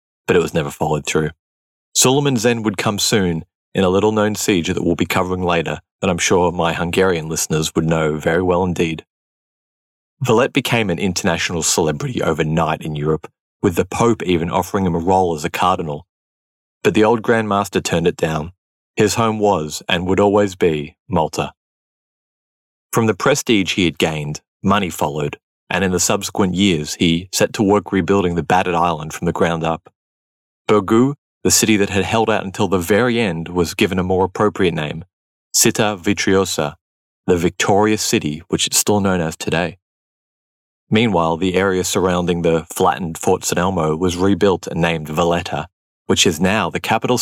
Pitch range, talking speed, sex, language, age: 80-100 Hz, 175 wpm, male, English, 30-49